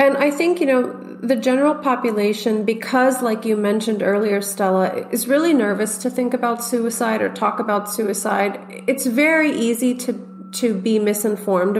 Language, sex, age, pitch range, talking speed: English, female, 30-49, 200-245 Hz, 165 wpm